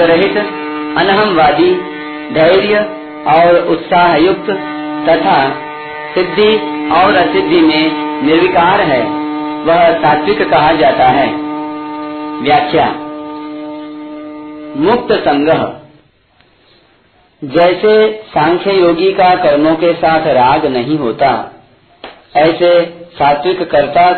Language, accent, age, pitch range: Hindi, native, 50-69, 150-175 Hz